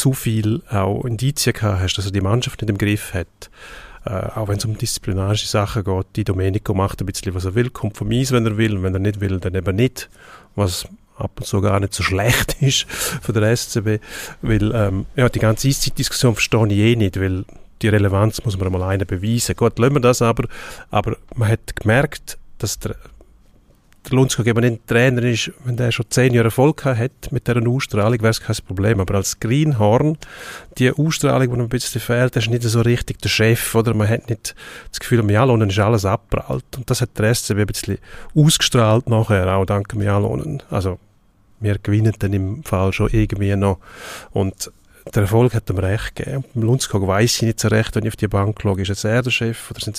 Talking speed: 210 wpm